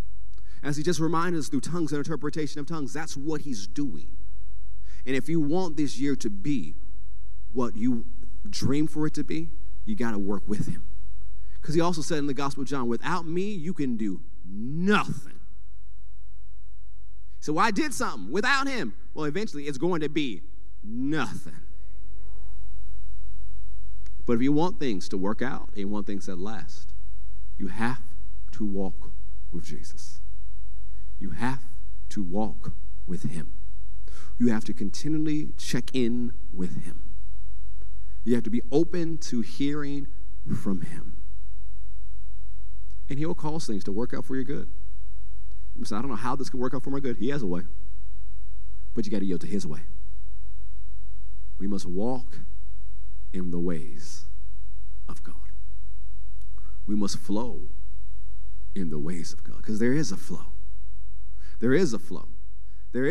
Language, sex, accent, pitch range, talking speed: English, male, American, 90-135 Hz, 160 wpm